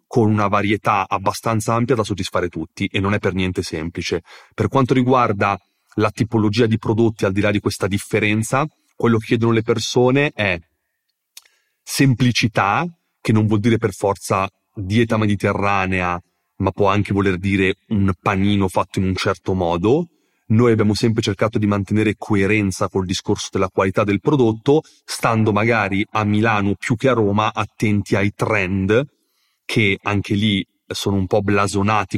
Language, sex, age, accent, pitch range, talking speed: Italian, male, 30-49, native, 100-110 Hz, 160 wpm